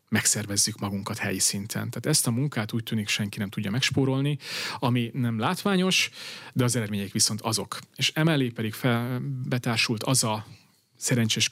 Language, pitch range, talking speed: Hungarian, 110-130 Hz, 155 wpm